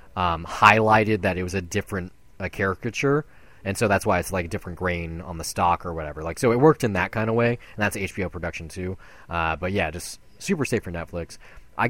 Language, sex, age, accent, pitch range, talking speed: English, male, 20-39, American, 95-130 Hz, 230 wpm